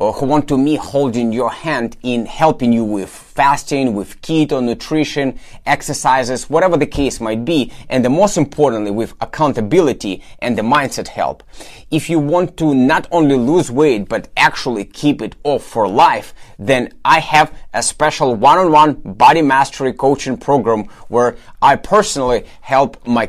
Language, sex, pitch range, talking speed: English, male, 115-155 Hz, 160 wpm